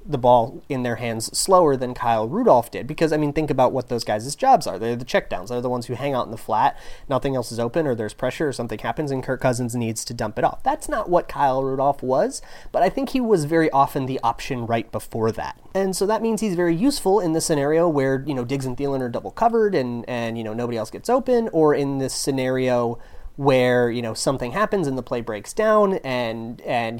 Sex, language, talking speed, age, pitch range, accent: male, English, 240 wpm, 30-49, 120-160 Hz, American